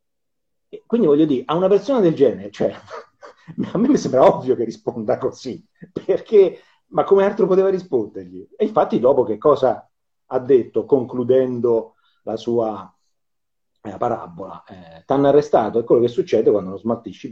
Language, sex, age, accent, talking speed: Italian, male, 40-59, native, 165 wpm